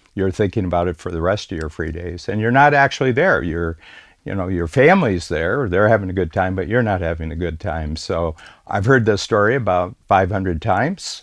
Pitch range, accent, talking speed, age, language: 85-105 Hz, American, 225 wpm, 60-79, English